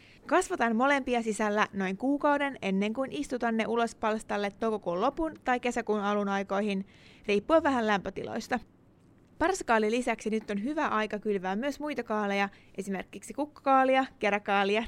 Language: Finnish